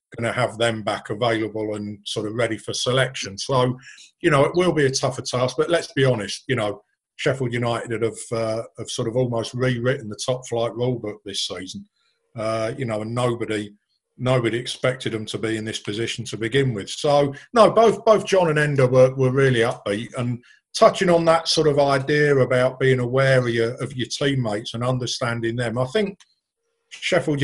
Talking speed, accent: 200 wpm, British